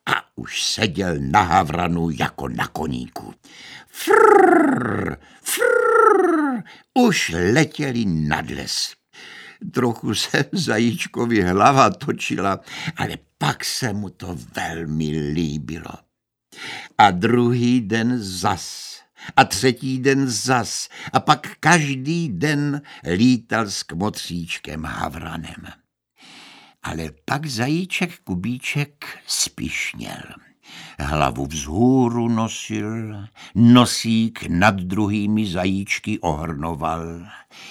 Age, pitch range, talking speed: 60-79, 95-150 Hz, 90 wpm